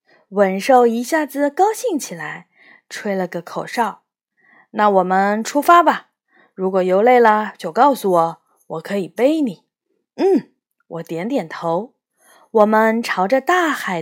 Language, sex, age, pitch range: Chinese, female, 20-39, 180-280 Hz